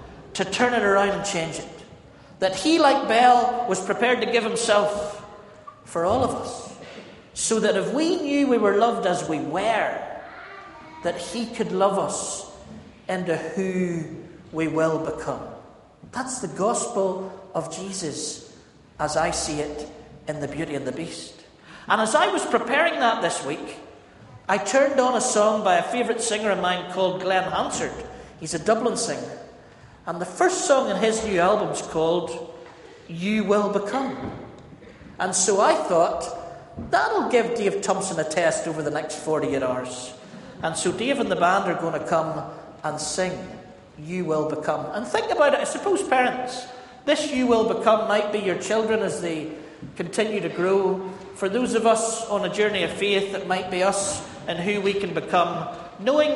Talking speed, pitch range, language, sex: 175 wpm, 165-230 Hz, English, male